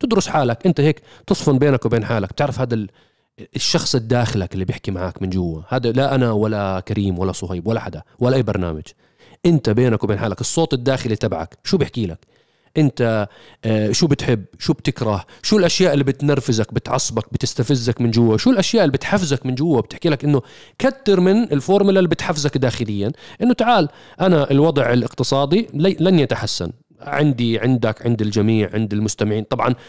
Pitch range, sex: 110-155 Hz, male